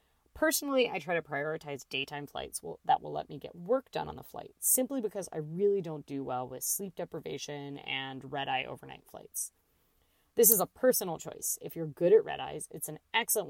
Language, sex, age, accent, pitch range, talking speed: English, female, 20-39, American, 140-200 Hz, 195 wpm